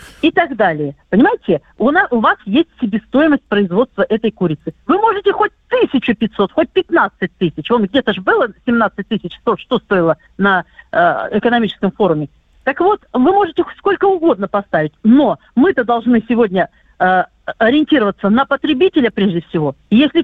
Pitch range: 220-310 Hz